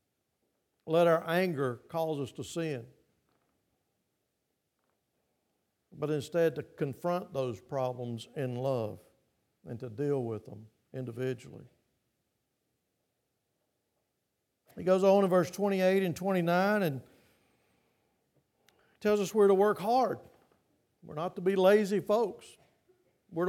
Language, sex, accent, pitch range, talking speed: English, male, American, 150-195 Hz, 110 wpm